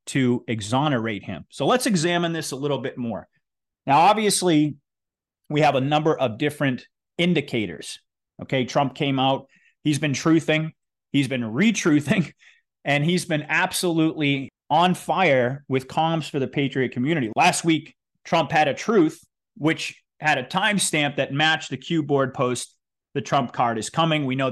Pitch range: 130-165 Hz